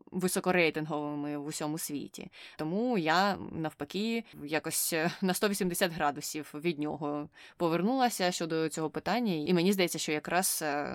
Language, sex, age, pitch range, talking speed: Ukrainian, female, 20-39, 150-180 Hz, 120 wpm